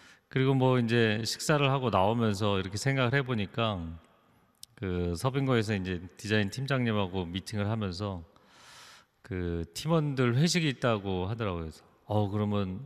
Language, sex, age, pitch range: Korean, male, 40-59, 100-140 Hz